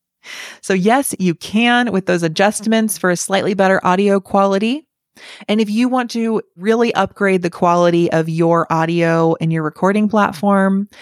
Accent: American